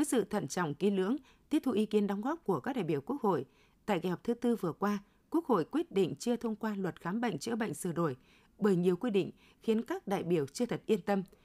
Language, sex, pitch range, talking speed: Vietnamese, female, 180-230 Hz, 265 wpm